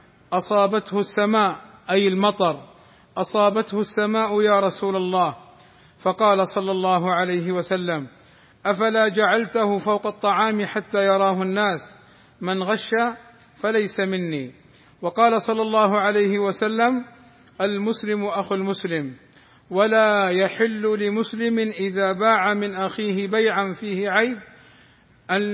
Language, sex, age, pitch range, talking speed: Arabic, male, 50-69, 190-220 Hz, 105 wpm